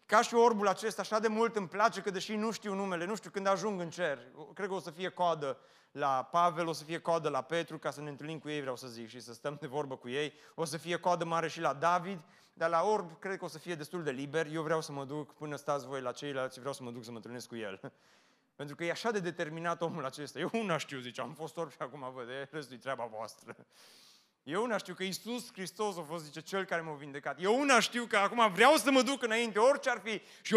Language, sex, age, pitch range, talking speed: Romanian, male, 30-49, 145-185 Hz, 270 wpm